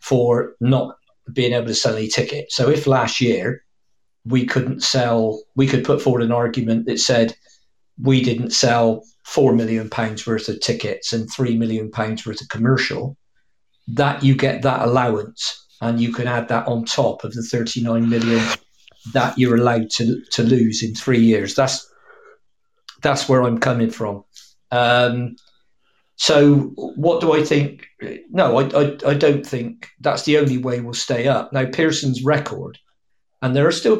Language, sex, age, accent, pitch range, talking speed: English, male, 40-59, British, 115-145 Hz, 170 wpm